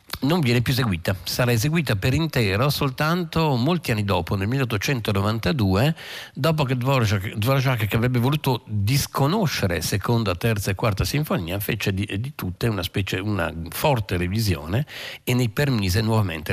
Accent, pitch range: native, 95-120 Hz